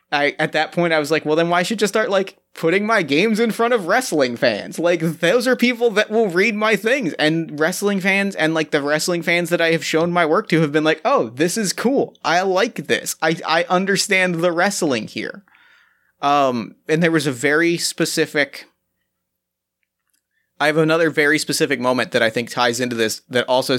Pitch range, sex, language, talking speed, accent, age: 125-165 Hz, male, English, 210 wpm, American, 30-49